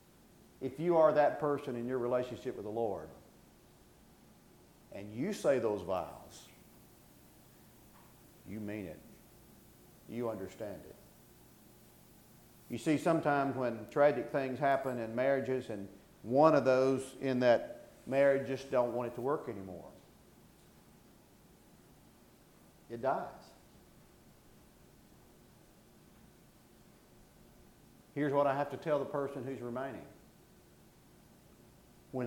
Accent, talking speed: American, 110 wpm